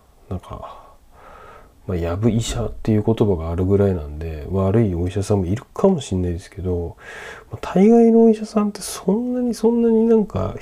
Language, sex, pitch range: Japanese, male, 90-125 Hz